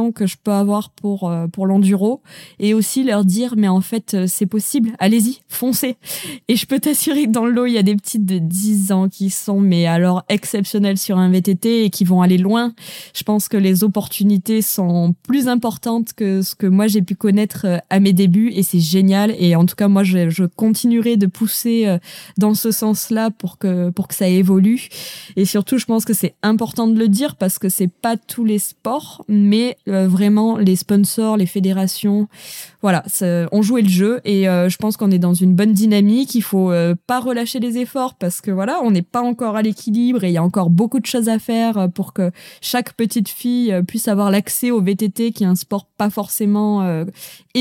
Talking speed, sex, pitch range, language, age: 215 wpm, female, 185-225 Hz, French, 20-39